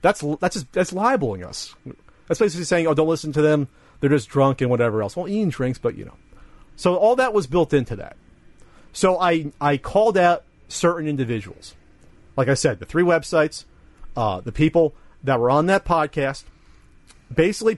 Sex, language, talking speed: male, English, 185 wpm